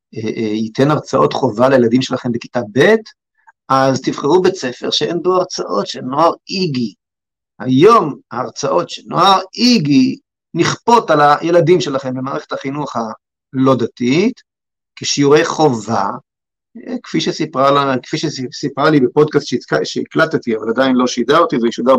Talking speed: 130 wpm